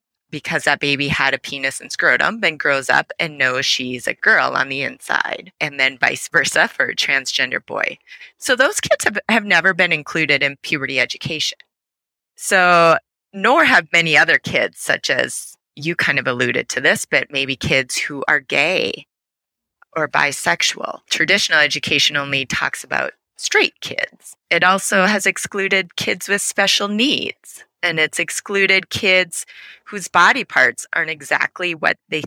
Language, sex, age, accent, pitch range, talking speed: English, female, 30-49, American, 145-190 Hz, 160 wpm